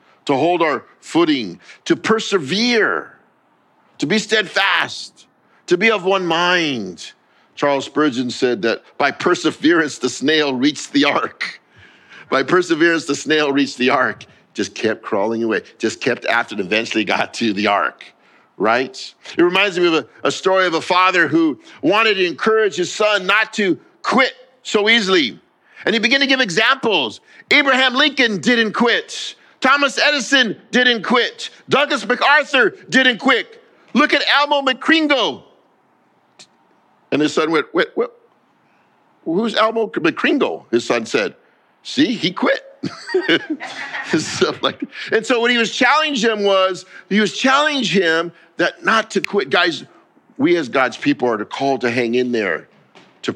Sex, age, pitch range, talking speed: male, 50-69, 180-290 Hz, 150 wpm